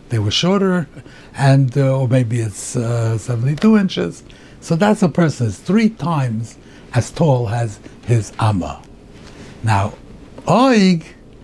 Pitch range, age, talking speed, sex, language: 115-160 Hz, 60-79, 130 wpm, male, English